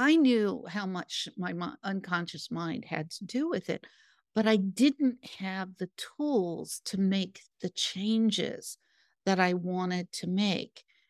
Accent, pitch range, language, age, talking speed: American, 180-225 Hz, English, 50-69, 145 wpm